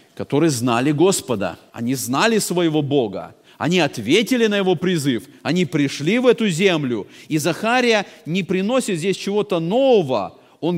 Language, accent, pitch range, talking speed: Russian, native, 155-210 Hz, 140 wpm